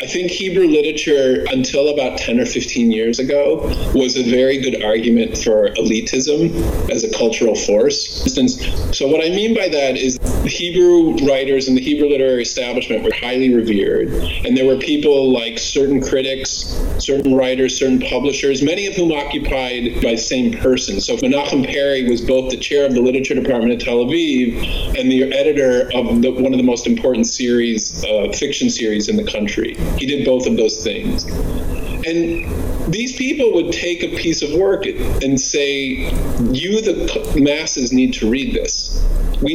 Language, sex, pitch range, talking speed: English, male, 120-165 Hz, 175 wpm